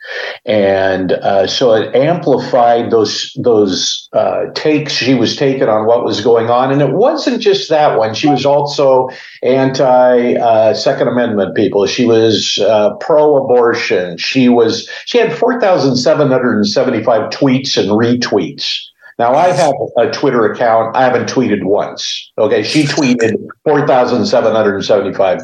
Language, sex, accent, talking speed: English, male, American, 135 wpm